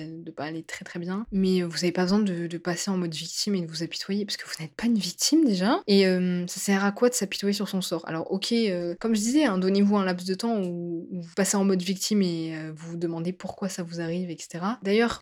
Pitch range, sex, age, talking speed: 175-205 Hz, female, 20-39, 275 wpm